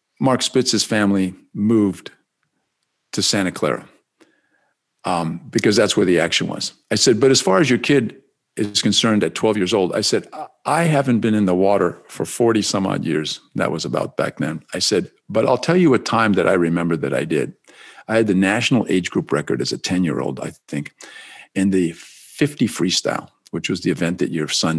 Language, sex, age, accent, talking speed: English, male, 50-69, American, 205 wpm